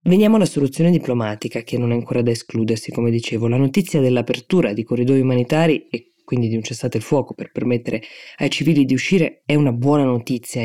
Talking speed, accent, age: 205 wpm, native, 20-39